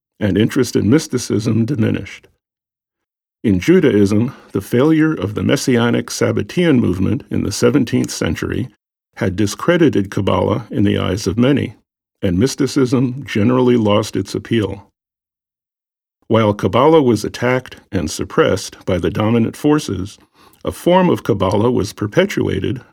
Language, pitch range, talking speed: English, 100-125 Hz, 125 wpm